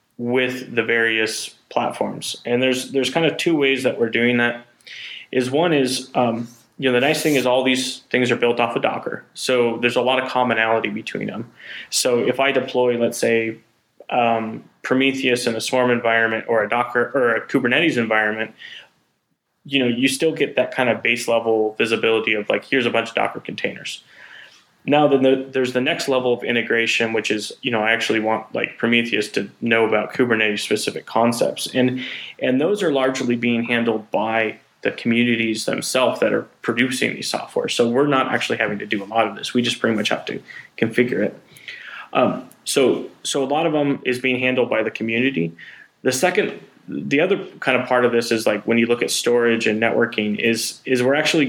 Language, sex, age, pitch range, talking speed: English, male, 20-39, 115-130 Hz, 200 wpm